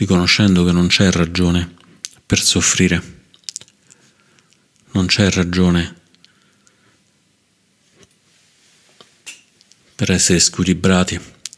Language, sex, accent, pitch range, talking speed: Italian, male, native, 85-95 Hz, 65 wpm